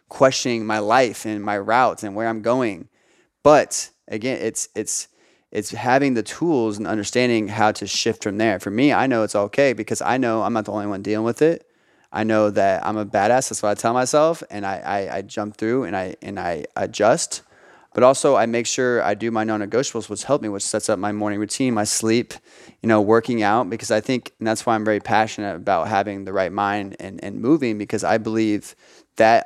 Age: 20-39